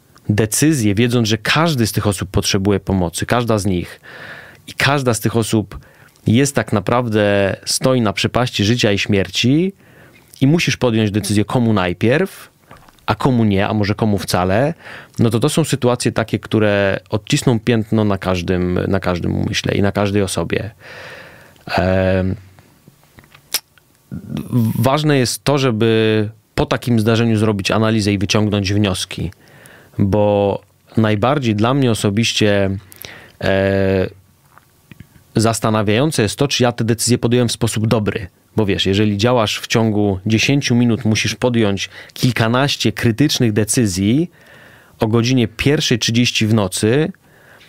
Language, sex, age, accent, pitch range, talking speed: Polish, male, 30-49, native, 105-125 Hz, 130 wpm